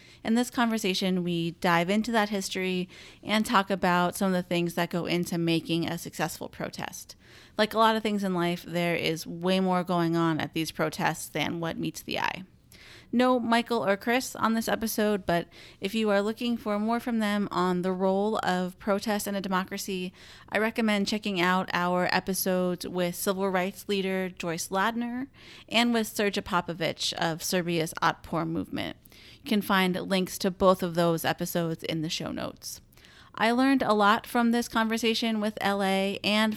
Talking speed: 180 wpm